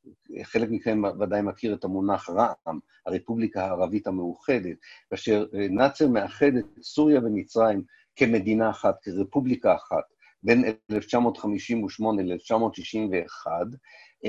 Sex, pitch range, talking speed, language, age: male, 95-120 Hz, 90 wpm, Hebrew, 50-69